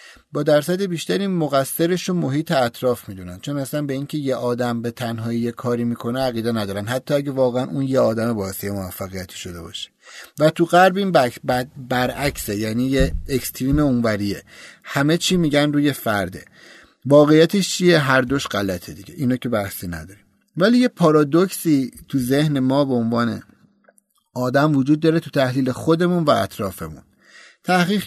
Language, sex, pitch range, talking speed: Persian, male, 110-145 Hz, 150 wpm